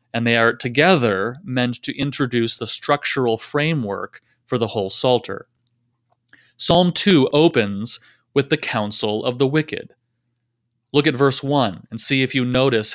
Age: 30-49